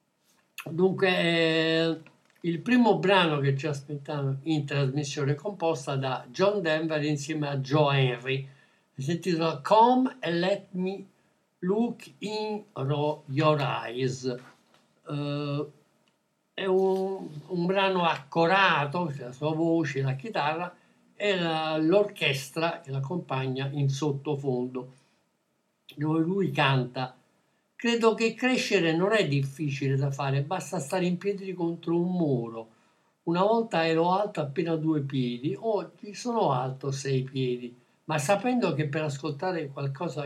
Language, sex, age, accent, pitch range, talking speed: Italian, male, 60-79, native, 140-185 Hz, 125 wpm